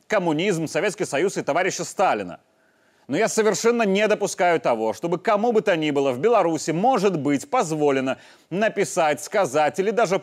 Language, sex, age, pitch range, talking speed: Russian, male, 30-49, 160-215 Hz, 160 wpm